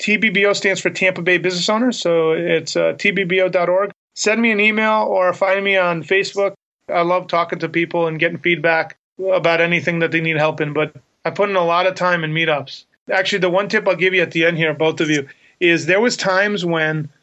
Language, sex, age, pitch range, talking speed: English, male, 30-49, 160-190 Hz, 225 wpm